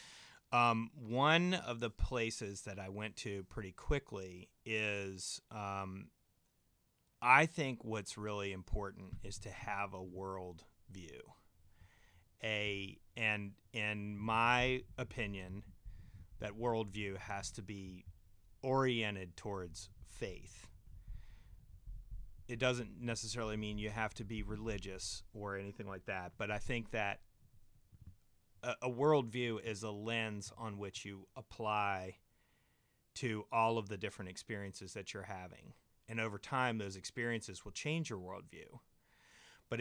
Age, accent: 30-49, American